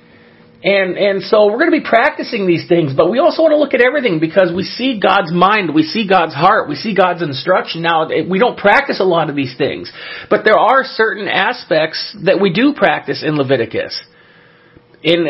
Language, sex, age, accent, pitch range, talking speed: English, male, 40-59, American, 165-215 Hz, 205 wpm